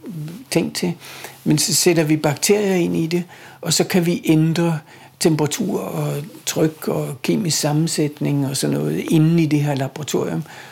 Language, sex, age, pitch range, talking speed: Danish, male, 60-79, 140-160 Hz, 160 wpm